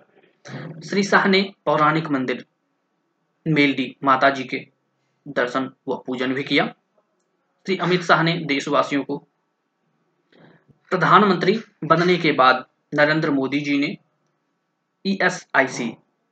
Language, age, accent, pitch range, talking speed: Hindi, 20-39, native, 130-165 Hz, 105 wpm